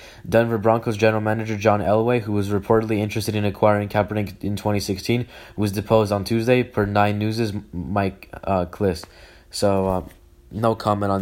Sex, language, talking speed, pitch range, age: male, English, 160 wpm, 100-110 Hz, 20-39